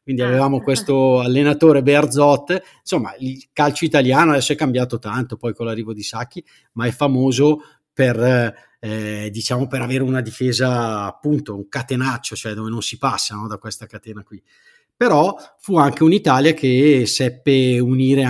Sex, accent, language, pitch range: male, native, Italian, 110-135 Hz